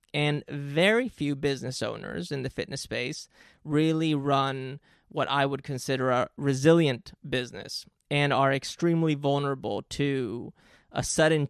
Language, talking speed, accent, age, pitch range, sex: English, 130 wpm, American, 20-39, 135-155 Hz, male